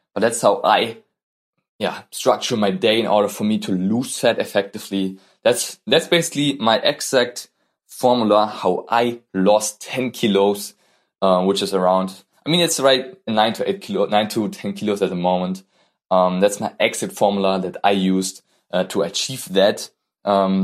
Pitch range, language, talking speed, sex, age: 95-120 Hz, English, 175 wpm, male, 20-39